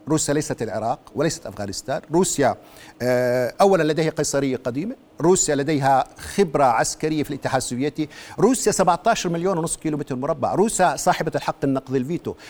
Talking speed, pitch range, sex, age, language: 140 wpm, 155-205 Hz, male, 50-69, Arabic